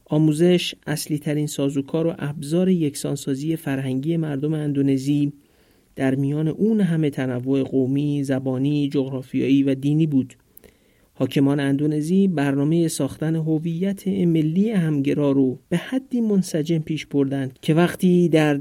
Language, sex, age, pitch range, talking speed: Persian, male, 50-69, 135-165 Hz, 120 wpm